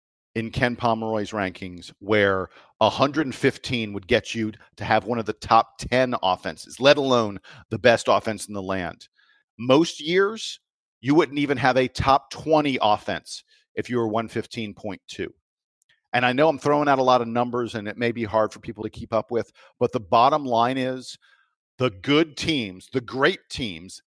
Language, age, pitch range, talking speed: English, 50-69, 110-125 Hz, 175 wpm